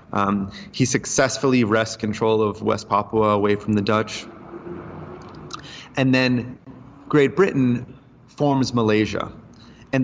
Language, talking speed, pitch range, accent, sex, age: English, 115 wpm, 110-135 Hz, American, male, 30-49